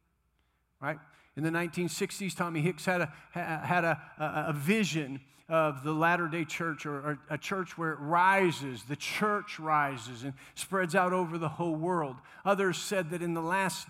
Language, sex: English, male